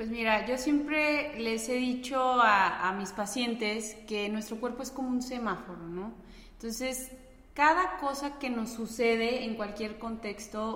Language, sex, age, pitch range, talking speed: Spanish, female, 20-39, 205-245 Hz, 155 wpm